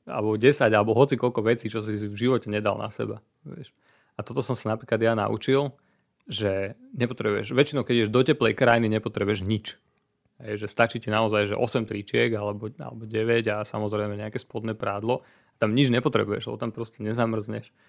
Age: 30-49